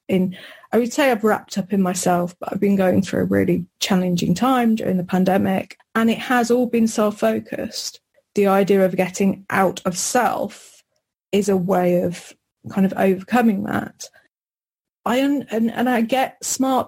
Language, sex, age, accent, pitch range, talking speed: English, female, 30-49, British, 185-225 Hz, 170 wpm